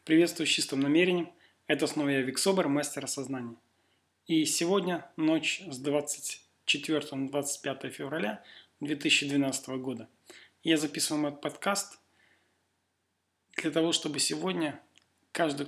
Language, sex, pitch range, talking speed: Russian, male, 105-155 Hz, 115 wpm